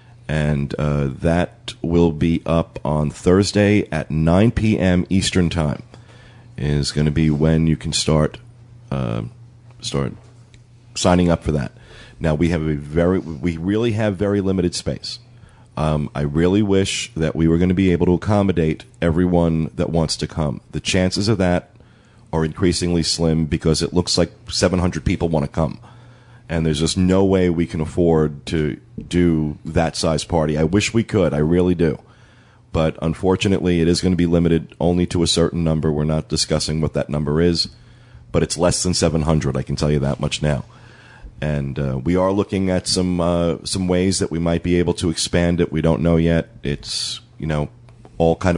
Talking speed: 185 wpm